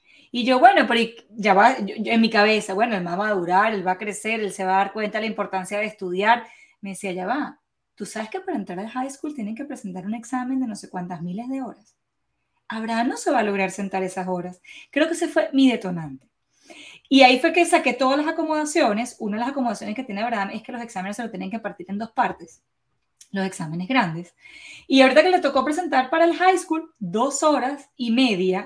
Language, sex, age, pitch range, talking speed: Spanish, female, 20-39, 205-285 Hz, 240 wpm